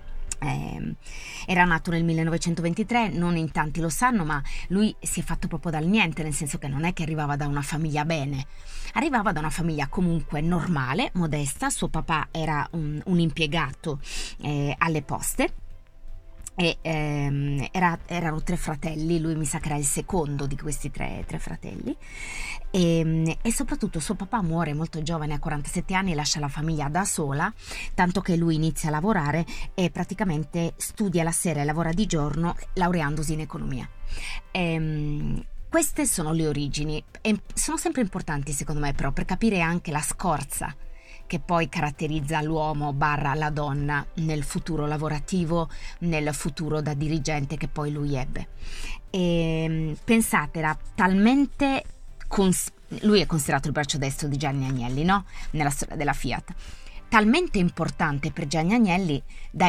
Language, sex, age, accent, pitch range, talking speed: Italian, female, 30-49, native, 150-180 Hz, 155 wpm